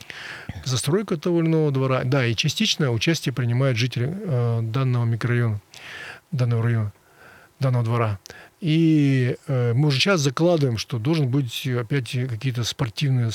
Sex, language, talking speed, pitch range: male, Russian, 130 wpm, 125-155 Hz